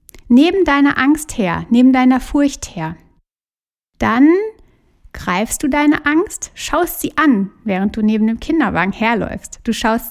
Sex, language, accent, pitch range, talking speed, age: female, German, German, 225-290 Hz, 140 wpm, 60-79